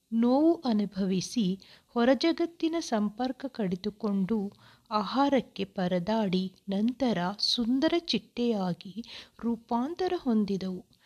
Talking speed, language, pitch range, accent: 65 wpm, Kannada, 205-260 Hz, native